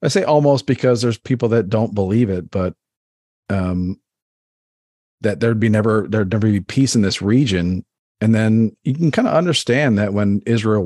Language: English